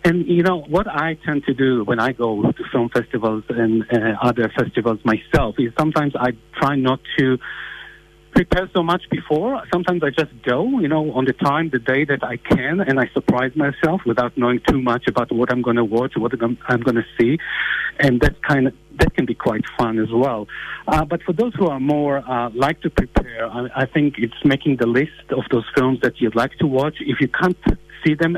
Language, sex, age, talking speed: English, male, 50-69, 220 wpm